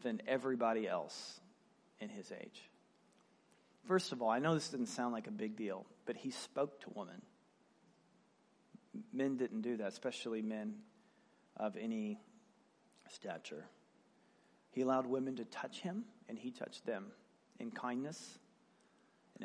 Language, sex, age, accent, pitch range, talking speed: English, male, 40-59, American, 120-180 Hz, 140 wpm